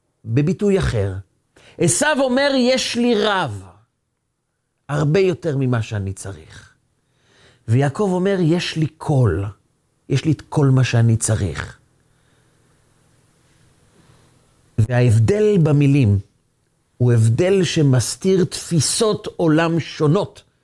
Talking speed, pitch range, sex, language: 95 wpm, 120-175 Hz, male, Hebrew